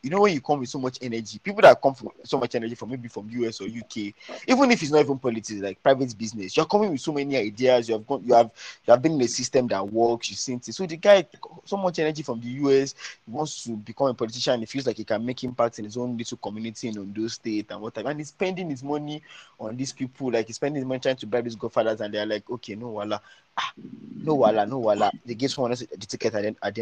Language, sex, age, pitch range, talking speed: English, male, 20-39, 115-155 Hz, 275 wpm